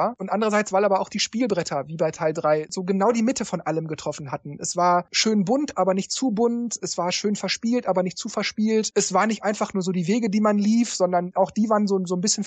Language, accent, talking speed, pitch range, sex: German, German, 260 wpm, 180-210 Hz, male